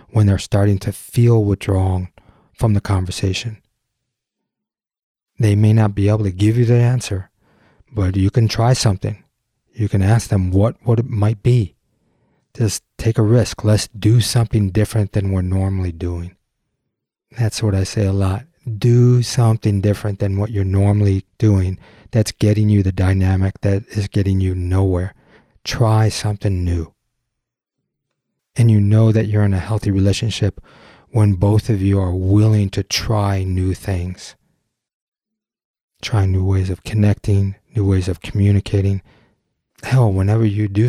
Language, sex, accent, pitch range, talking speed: English, male, American, 95-110 Hz, 155 wpm